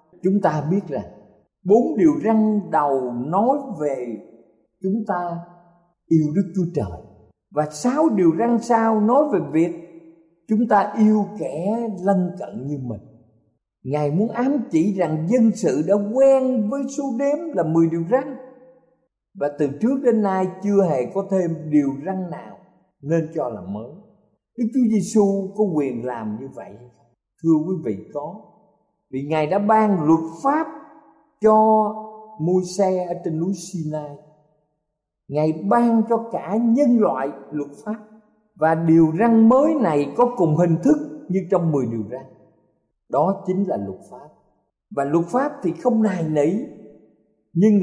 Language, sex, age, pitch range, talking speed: Vietnamese, male, 50-69, 150-225 Hz, 155 wpm